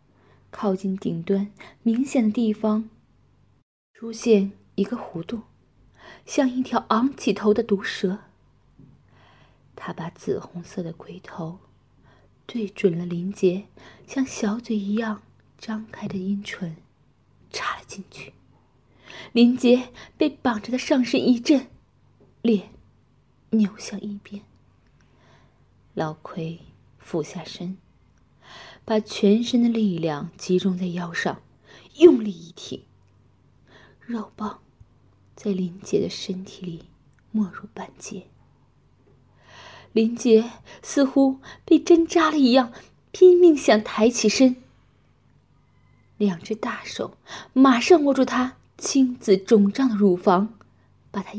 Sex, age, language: female, 20-39, Chinese